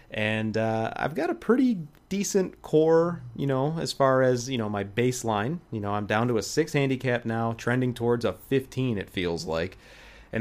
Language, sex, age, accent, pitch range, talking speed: English, male, 30-49, American, 100-125 Hz, 195 wpm